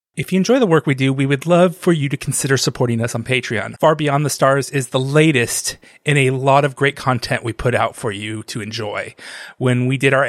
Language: English